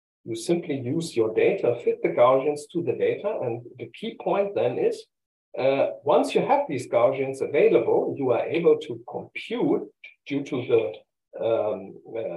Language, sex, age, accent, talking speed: English, male, 50-69, German, 165 wpm